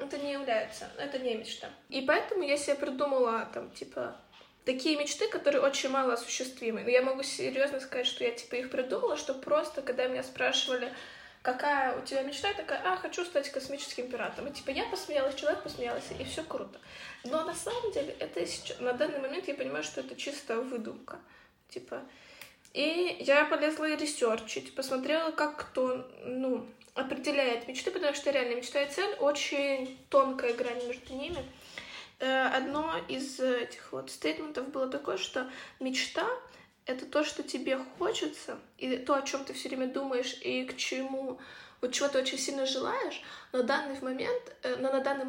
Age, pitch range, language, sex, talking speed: 20-39, 255-295 Hz, Ukrainian, female, 170 wpm